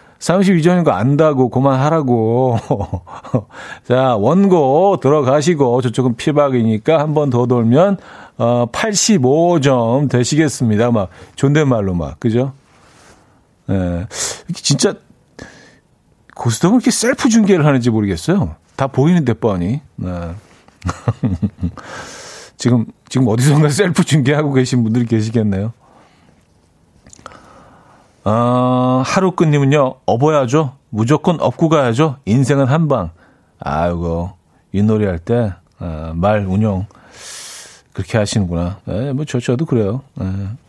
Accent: native